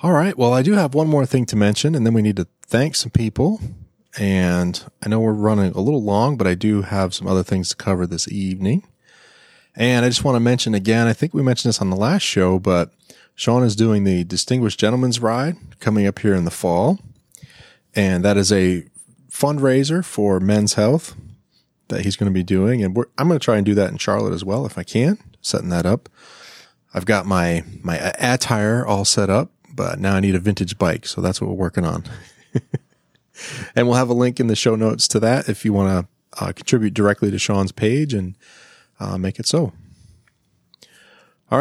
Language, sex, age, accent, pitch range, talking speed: English, male, 30-49, American, 95-125 Hz, 215 wpm